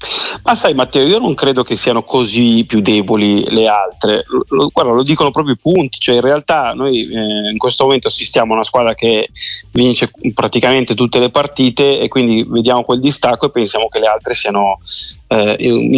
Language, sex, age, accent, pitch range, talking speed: Italian, male, 30-49, native, 110-135 Hz, 185 wpm